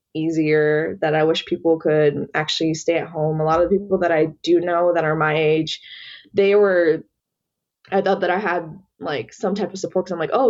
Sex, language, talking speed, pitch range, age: female, English, 225 wpm, 160-195 Hz, 20-39